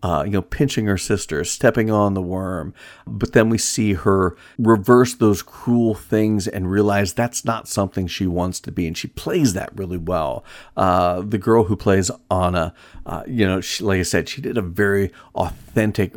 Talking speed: 190 wpm